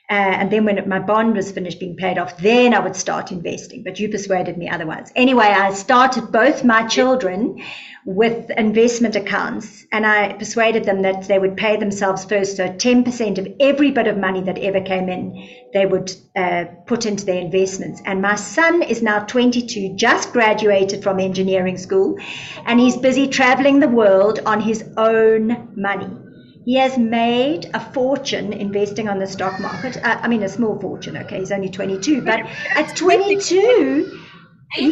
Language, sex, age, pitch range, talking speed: English, female, 50-69, 195-235 Hz, 175 wpm